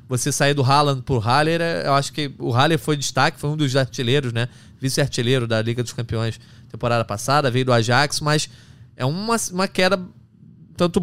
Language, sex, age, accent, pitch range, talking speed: Portuguese, male, 20-39, Brazilian, 120-160 Hz, 185 wpm